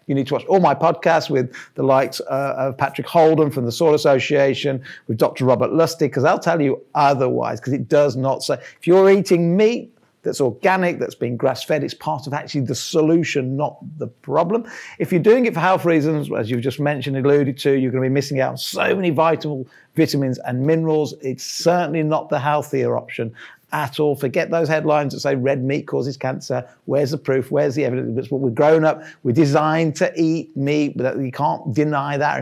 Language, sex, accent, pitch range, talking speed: English, male, British, 135-165 Hz, 210 wpm